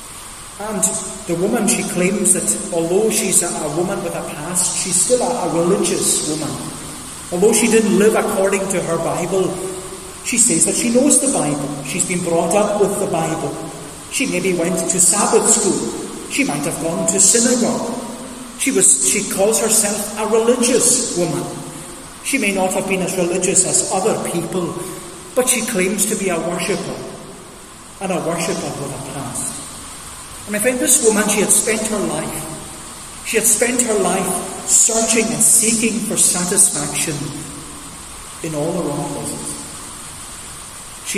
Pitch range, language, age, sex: 165-210 Hz, English, 30-49, male